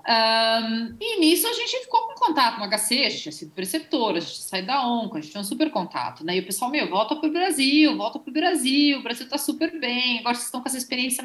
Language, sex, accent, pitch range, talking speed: Portuguese, female, Brazilian, 225-325 Hz, 255 wpm